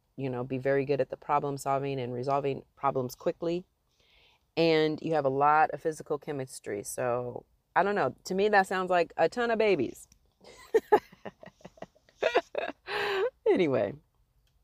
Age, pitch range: 30-49, 145-185 Hz